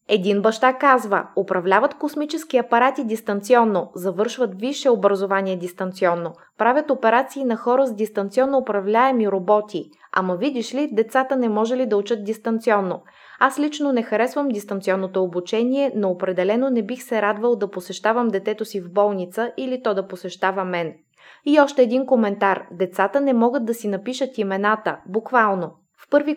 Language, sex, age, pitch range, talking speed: Bulgarian, female, 20-39, 200-255 Hz, 150 wpm